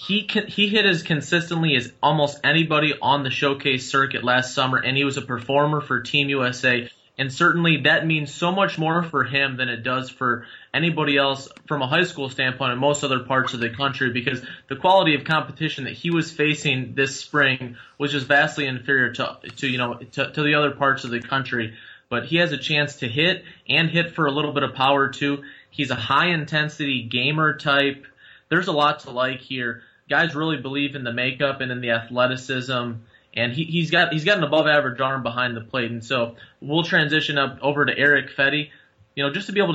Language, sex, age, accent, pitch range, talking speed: English, male, 30-49, American, 125-150 Hz, 210 wpm